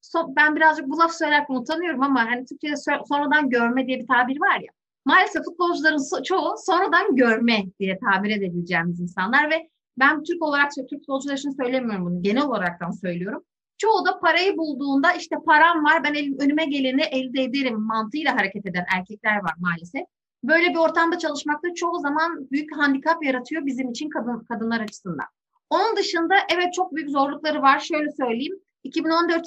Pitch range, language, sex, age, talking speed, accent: 240-325 Hz, Turkish, female, 30-49, 170 wpm, native